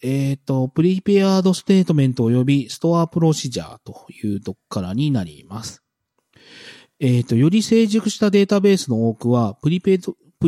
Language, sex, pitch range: Japanese, male, 120-175 Hz